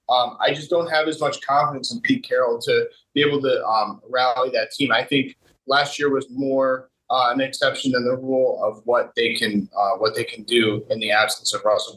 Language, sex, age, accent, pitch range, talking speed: English, male, 30-49, American, 120-155 Hz, 225 wpm